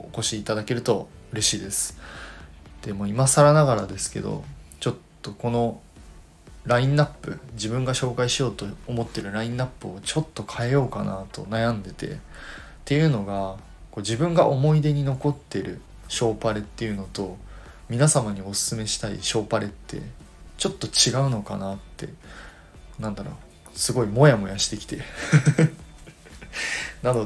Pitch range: 100-125 Hz